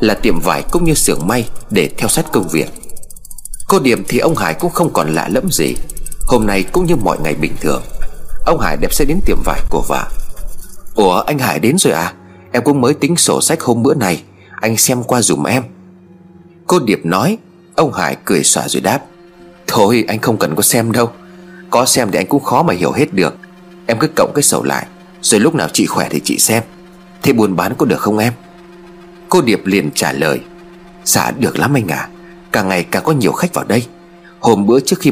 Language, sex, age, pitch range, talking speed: Vietnamese, male, 30-49, 115-175 Hz, 225 wpm